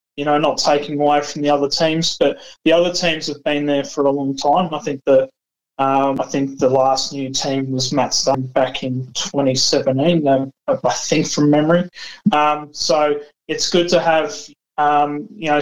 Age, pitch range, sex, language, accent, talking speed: 20-39, 140-160 Hz, male, English, Australian, 185 wpm